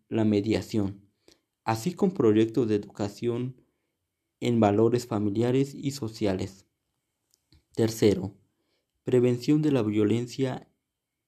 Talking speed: 90 wpm